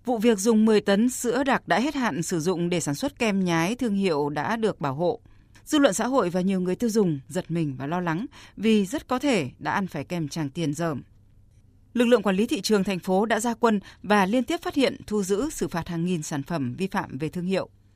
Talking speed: 255 wpm